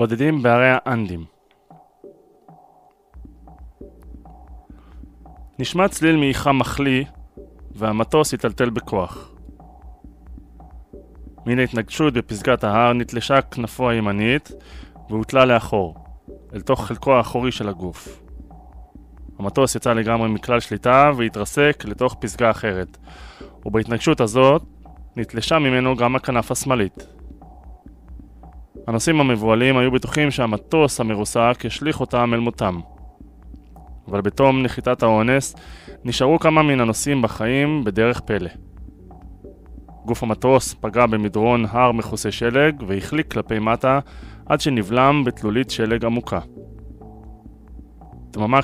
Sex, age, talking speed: male, 20-39, 95 wpm